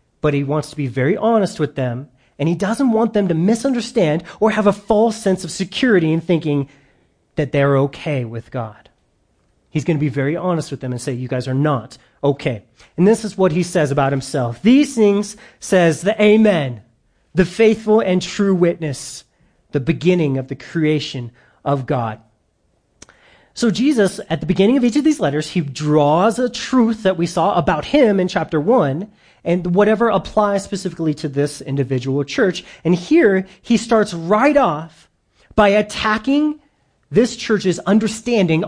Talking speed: 170 wpm